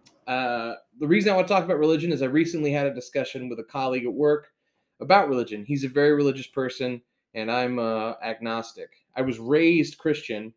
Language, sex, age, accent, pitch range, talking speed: English, male, 20-39, American, 115-150 Hz, 200 wpm